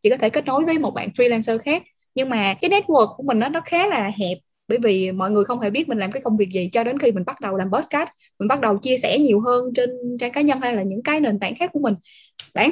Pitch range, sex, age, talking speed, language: 205-275 Hz, female, 10-29, 295 wpm, Vietnamese